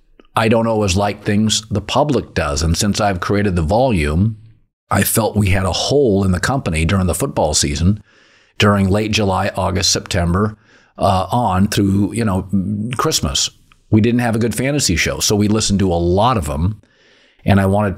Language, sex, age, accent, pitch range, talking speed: English, male, 50-69, American, 95-110 Hz, 185 wpm